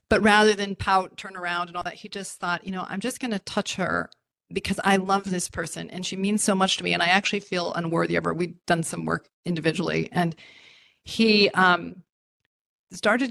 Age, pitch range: 40-59, 175-210 Hz